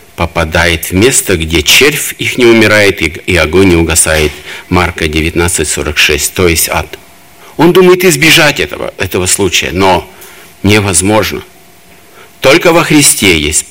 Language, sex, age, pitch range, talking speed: Russian, male, 50-69, 90-120 Hz, 130 wpm